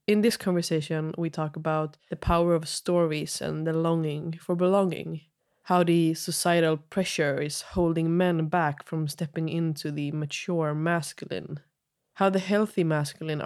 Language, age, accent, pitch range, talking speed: Swedish, 20-39, native, 155-175 Hz, 145 wpm